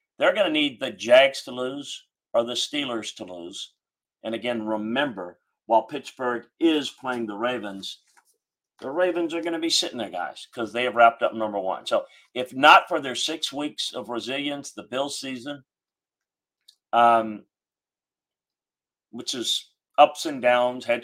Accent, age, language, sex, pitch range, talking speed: American, 40-59, English, male, 110-130 Hz, 165 wpm